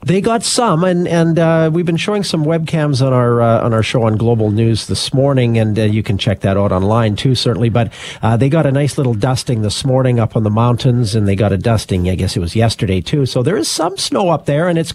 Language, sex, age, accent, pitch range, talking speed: English, male, 50-69, American, 115-160 Hz, 265 wpm